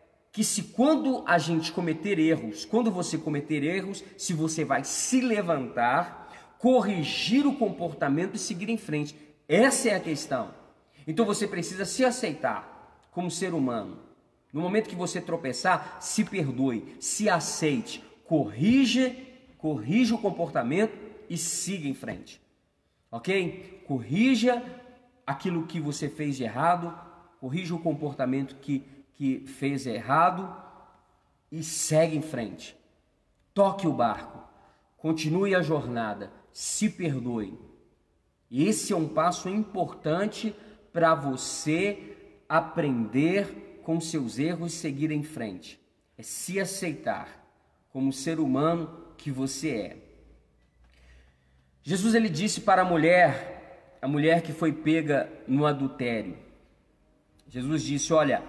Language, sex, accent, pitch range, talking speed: Portuguese, male, Brazilian, 145-195 Hz, 120 wpm